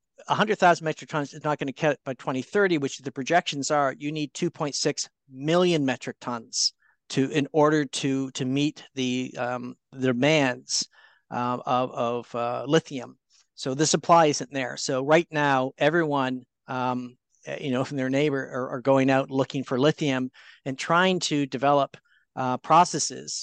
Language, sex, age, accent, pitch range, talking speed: English, male, 50-69, American, 130-150 Hz, 160 wpm